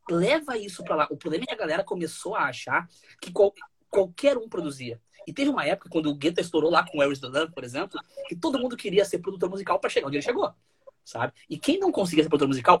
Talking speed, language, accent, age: 245 wpm, Portuguese, Brazilian, 20-39